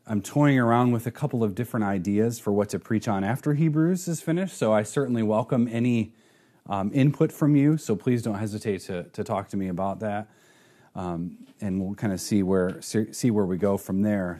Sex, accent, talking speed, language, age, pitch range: male, American, 215 wpm, English, 30-49, 110-150 Hz